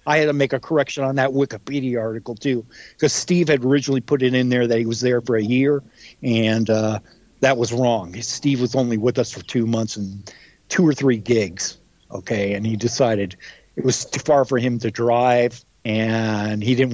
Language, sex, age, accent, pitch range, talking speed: English, male, 50-69, American, 120-140 Hz, 210 wpm